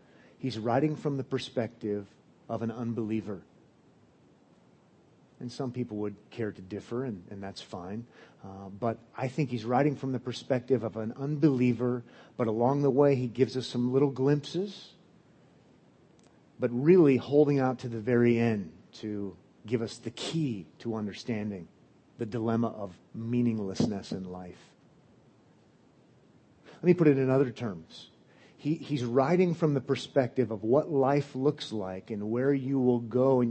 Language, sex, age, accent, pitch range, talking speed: English, male, 40-59, American, 115-150 Hz, 150 wpm